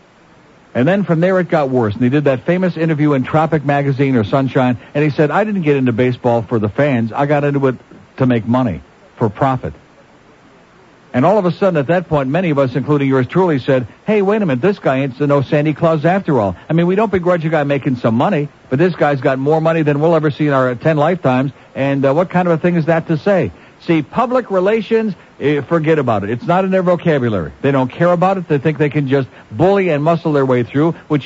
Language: English